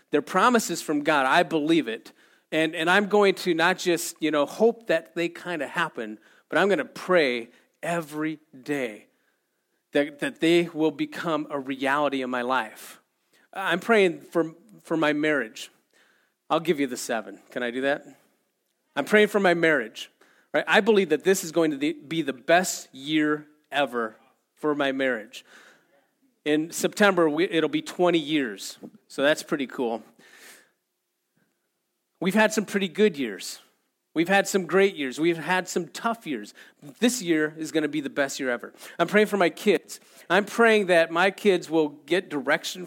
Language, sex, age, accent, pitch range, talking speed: English, male, 40-59, American, 150-185 Hz, 175 wpm